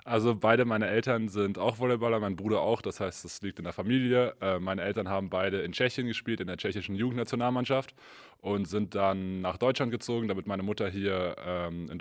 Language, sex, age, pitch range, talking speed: German, male, 20-39, 90-115 Hz, 195 wpm